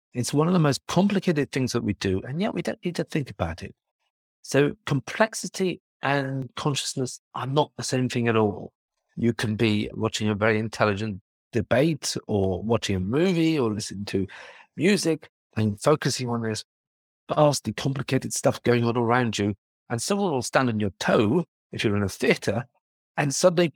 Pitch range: 100-135 Hz